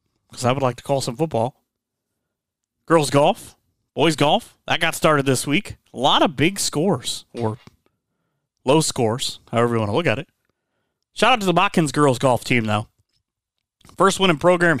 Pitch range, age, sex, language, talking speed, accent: 125-155 Hz, 30-49, male, English, 180 wpm, American